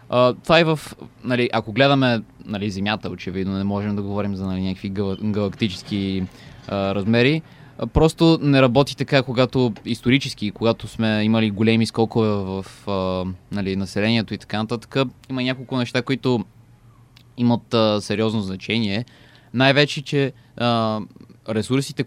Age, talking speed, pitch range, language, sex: 20-39, 135 wpm, 105-130 Hz, Bulgarian, male